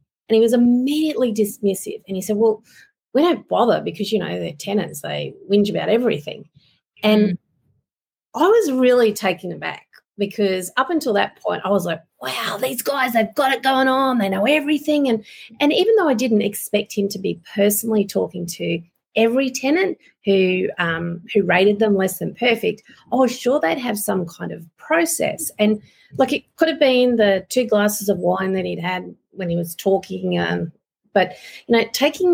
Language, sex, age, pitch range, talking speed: English, female, 30-49, 185-250 Hz, 185 wpm